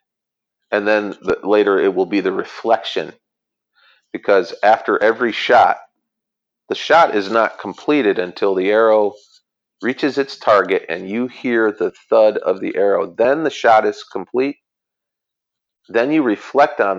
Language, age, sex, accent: English, 40-59, male, American